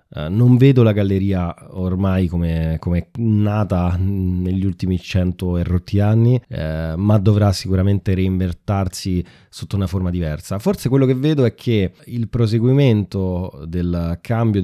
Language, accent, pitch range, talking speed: Italian, native, 90-115 Hz, 140 wpm